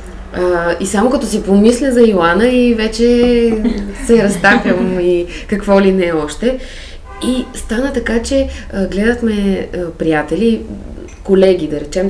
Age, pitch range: 20-39, 175-230 Hz